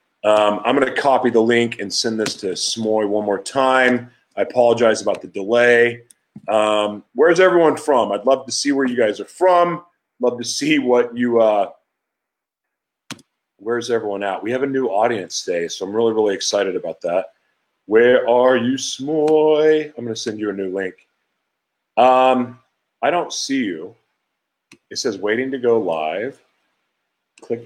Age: 40-59